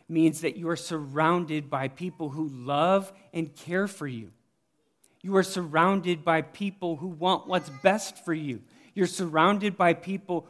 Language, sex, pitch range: English, male, 140-170 Hz